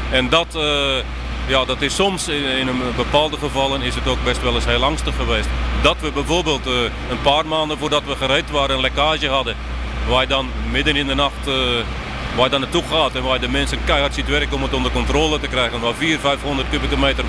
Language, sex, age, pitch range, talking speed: Dutch, male, 40-59, 120-150 Hz, 235 wpm